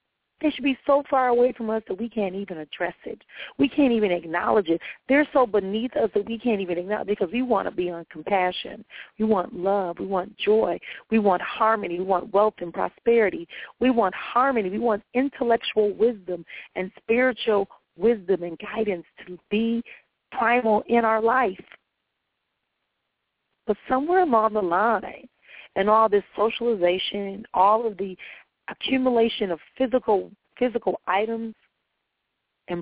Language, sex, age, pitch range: English, female, 40-59, 190-245 Hz